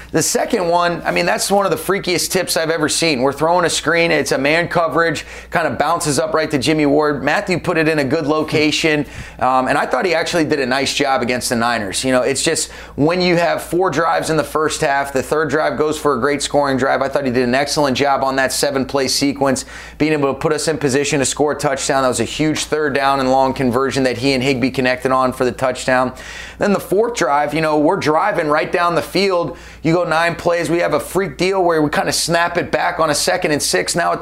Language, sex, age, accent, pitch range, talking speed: English, male, 30-49, American, 140-165 Hz, 260 wpm